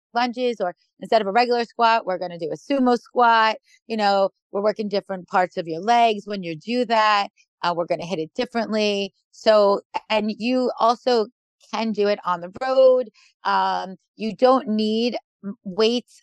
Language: English